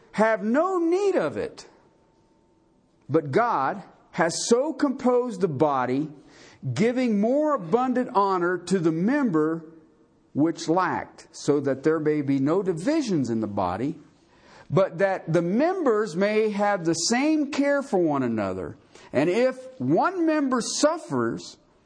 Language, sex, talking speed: English, male, 130 wpm